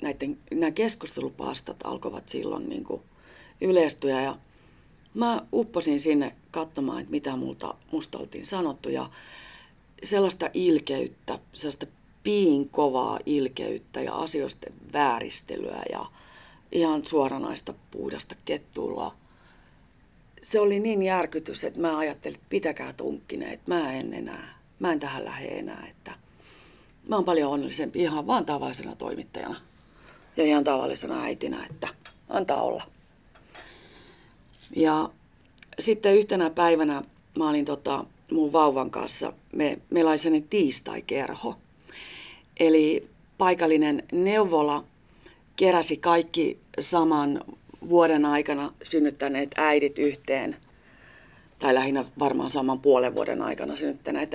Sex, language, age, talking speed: female, Finnish, 40-59, 110 wpm